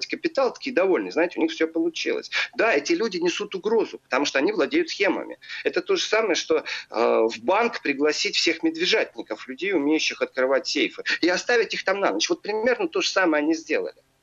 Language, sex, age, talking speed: Russian, male, 40-59, 195 wpm